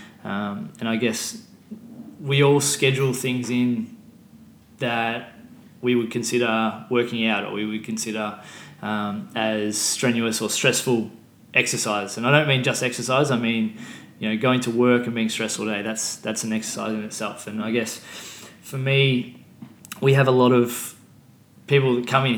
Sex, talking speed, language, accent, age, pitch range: male, 170 wpm, English, Australian, 20-39, 110-130 Hz